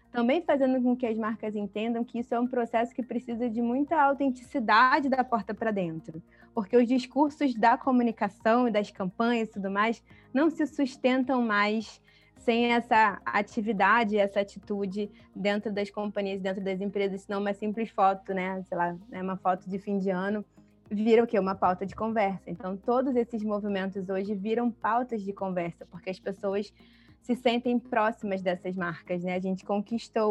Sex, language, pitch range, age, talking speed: female, Portuguese, 190-235 Hz, 20-39, 180 wpm